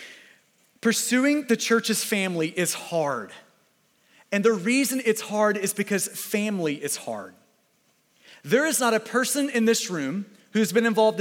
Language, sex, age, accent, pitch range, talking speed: English, male, 30-49, American, 195-250 Hz, 145 wpm